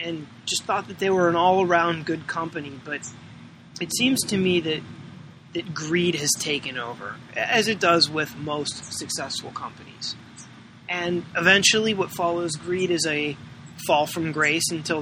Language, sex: English, male